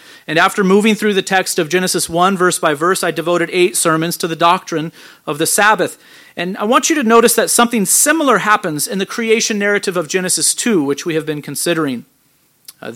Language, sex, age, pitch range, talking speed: English, male, 40-59, 160-210 Hz, 210 wpm